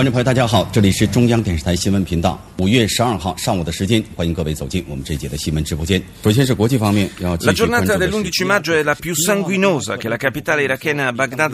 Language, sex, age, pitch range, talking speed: Italian, male, 40-59, 110-140 Hz, 70 wpm